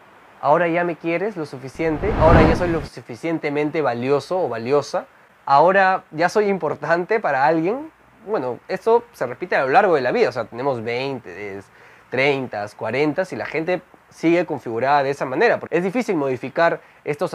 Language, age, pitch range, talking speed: Spanish, 20-39, 140-180 Hz, 170 wpm